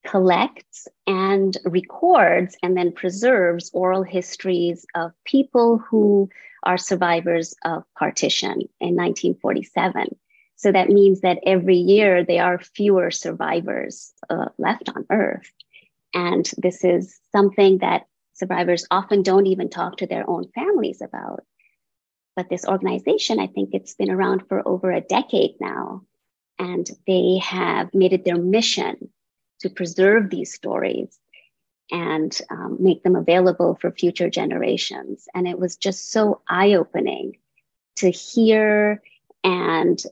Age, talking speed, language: 30-49, 130 wpm, English